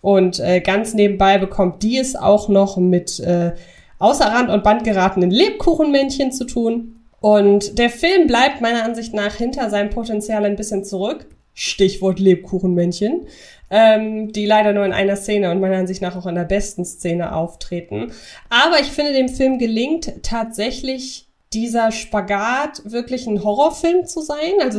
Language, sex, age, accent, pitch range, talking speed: German, female, 20-39, German, 200-250 Hz, 155 wpm